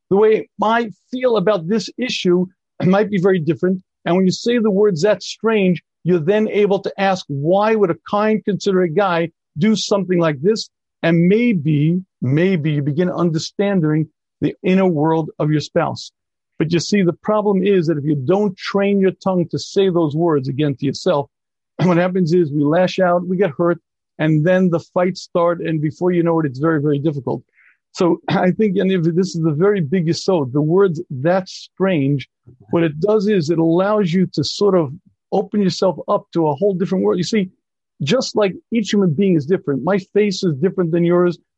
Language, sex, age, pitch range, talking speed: English, male, 50-69, 165-200 Hz, 195 wpm